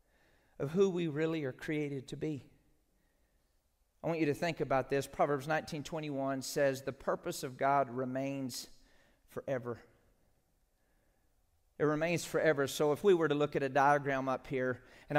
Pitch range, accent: 150-225 Hz, American